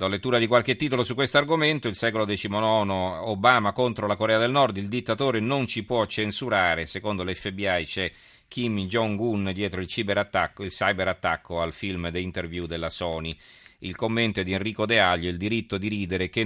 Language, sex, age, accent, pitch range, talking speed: Italian, male, 40-59, native, 90-115 Hz, 180 wpm